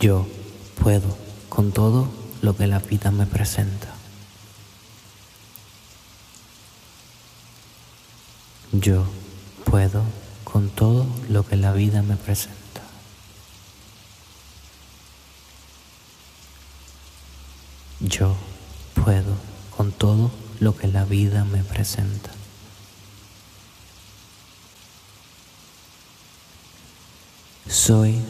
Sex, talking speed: male, 65 wpm